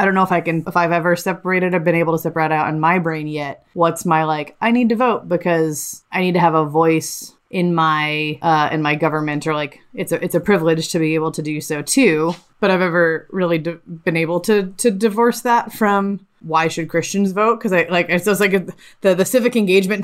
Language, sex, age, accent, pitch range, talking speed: English, female, 20-39, American, 160-190 Hz, 245 wpm